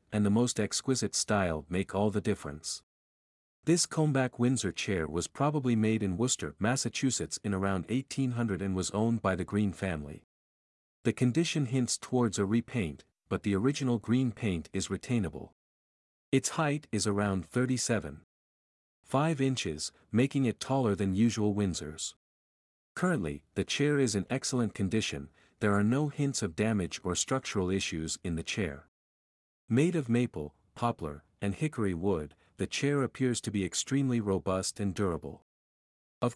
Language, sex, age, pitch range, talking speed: English, male, 50-69, 90-125 Hz, 150 wpm